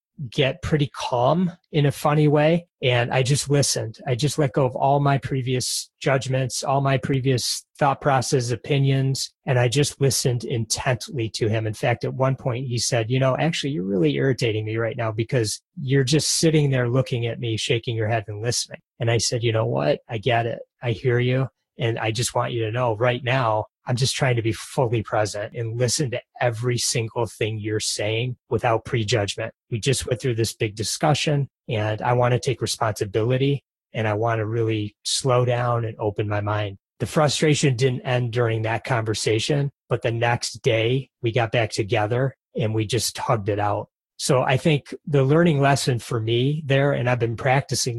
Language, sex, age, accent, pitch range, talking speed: English, male, 30-49, American, 115-135 Hz, 200 wpm